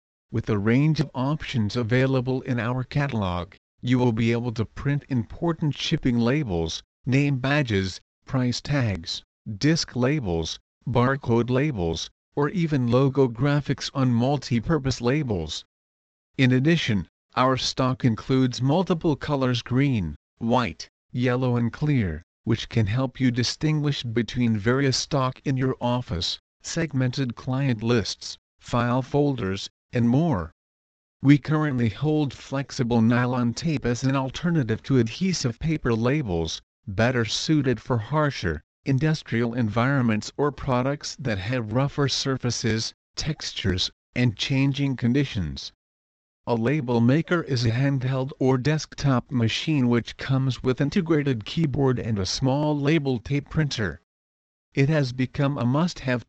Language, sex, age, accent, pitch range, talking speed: English, male, 50-69, American, 110-140 Hz, 125 wpm